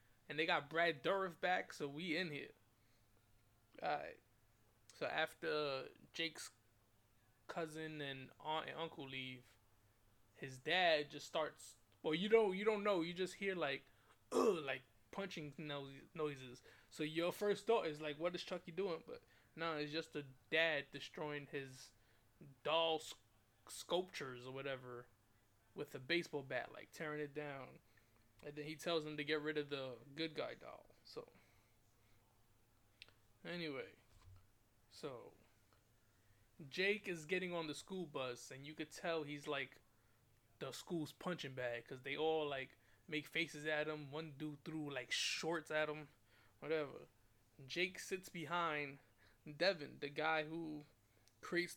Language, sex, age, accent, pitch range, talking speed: English, male, 20-39, American, 115-160 Hz, 150 wpm